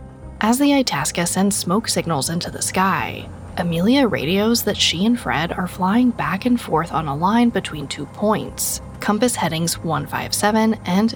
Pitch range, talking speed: 150-215 Hz, 160 wpm